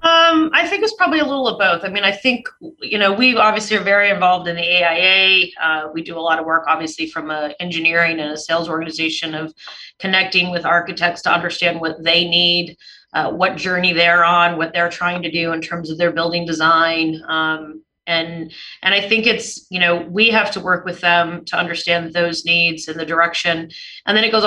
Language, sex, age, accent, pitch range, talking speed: English, female, 30-49, American, 160-190 Hz, 215 wpm